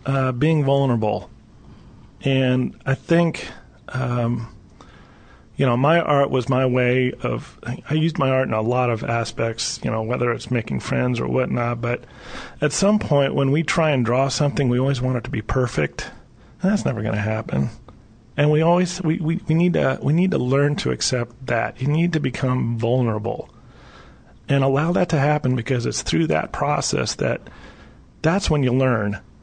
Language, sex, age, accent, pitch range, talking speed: English, male, 40-59, American, 120-150 Hz, 185 wpm